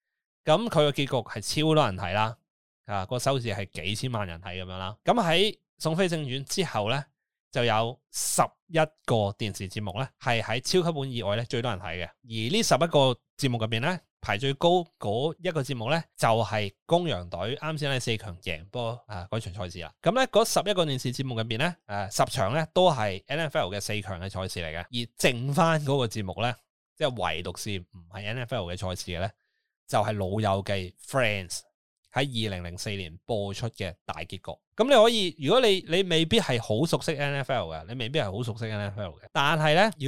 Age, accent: 20-39, native